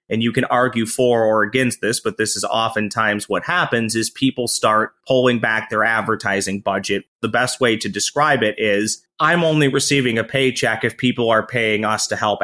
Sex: male